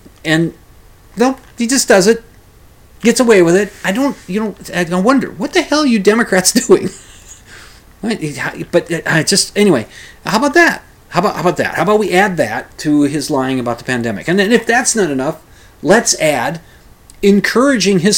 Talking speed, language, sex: 185 wpm, English, male